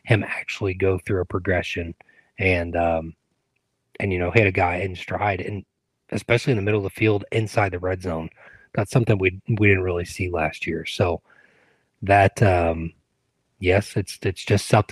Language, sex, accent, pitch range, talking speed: English, male, American, 95-110 Hz, 180 wpm